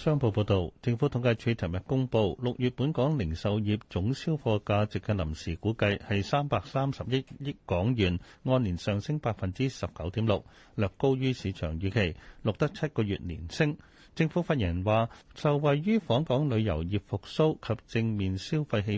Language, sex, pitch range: Chinese, male, 95-130 Hz